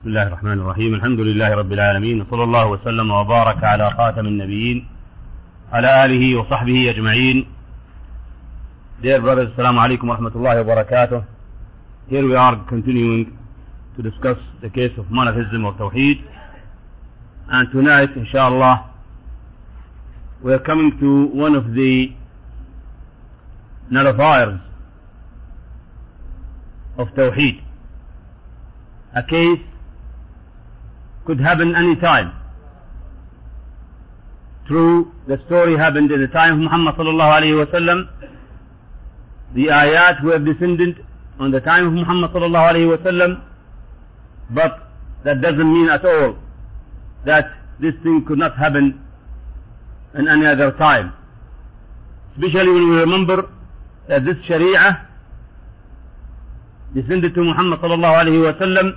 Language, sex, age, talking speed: English, male, 50-69, 95 wpm